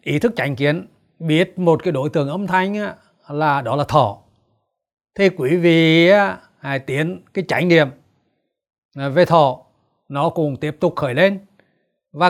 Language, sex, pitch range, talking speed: Vietnamese, male, 140-195 Hz, 155 wpm